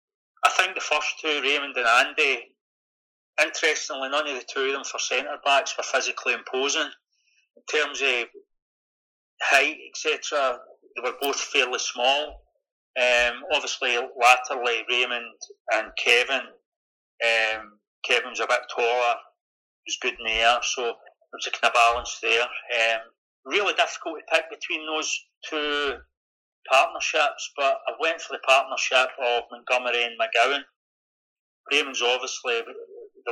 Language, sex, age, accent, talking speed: English, male, 40-59, British, 140 wpm